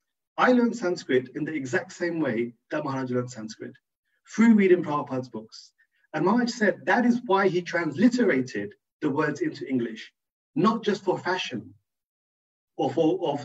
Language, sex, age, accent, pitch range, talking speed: English, male, 40-59, British, 130-175 Hz, 155 wpm